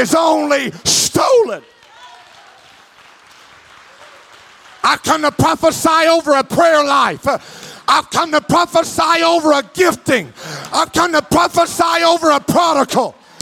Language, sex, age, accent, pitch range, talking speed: English, male, 50-69, American, 230-325 Hz, 110 wpm